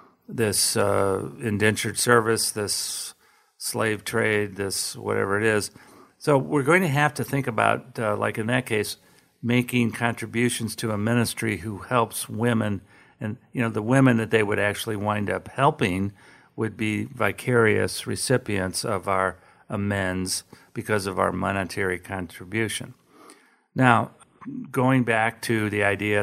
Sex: male